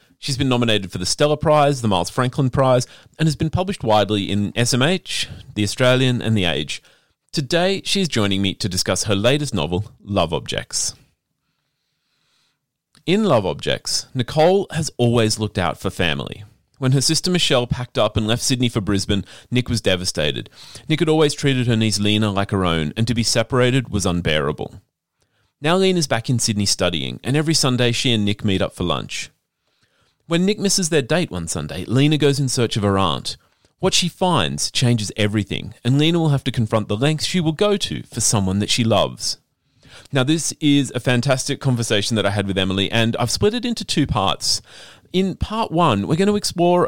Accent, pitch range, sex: Australian, 105-145 Hz, male